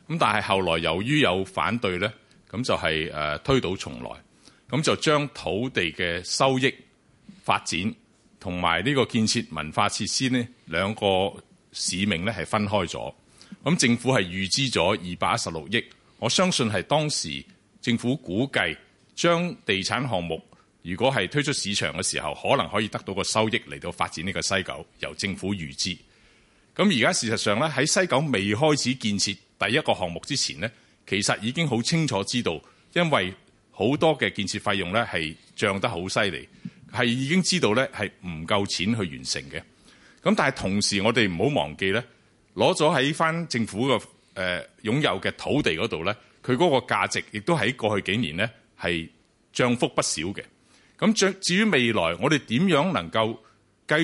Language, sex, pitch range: Chinese, male, 95-135 Hz